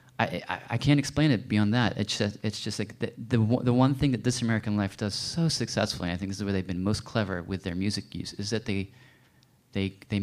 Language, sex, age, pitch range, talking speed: English, male, 30-49, 95-120 Hz, 250 wpm